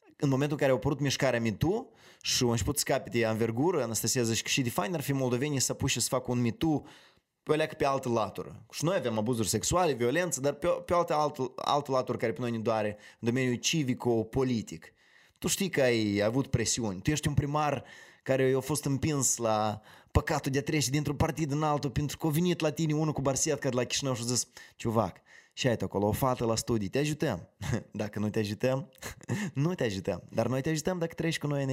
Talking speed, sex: 235 wpm, male